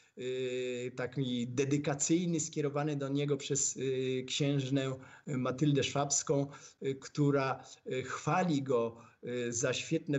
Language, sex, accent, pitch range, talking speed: Polish, male, native, 130-160 Hz, 80 wpm